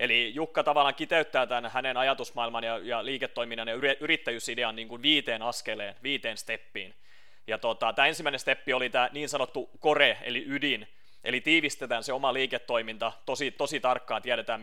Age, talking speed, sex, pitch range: 30-49, 160 wpm, male, 115-140 Hz